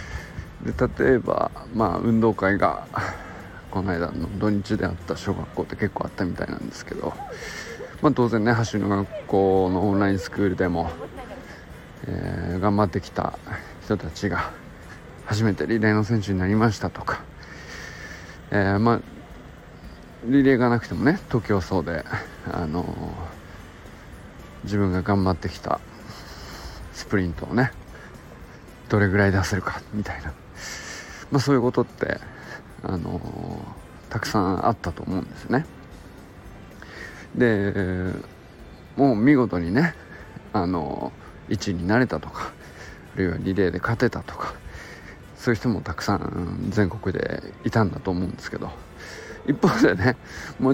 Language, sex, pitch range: Japanese, male, 90-105 Hz